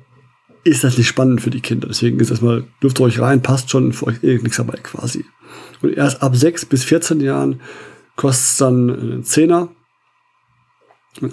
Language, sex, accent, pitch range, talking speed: German, male, German, 120-145 Hz, 180 wpm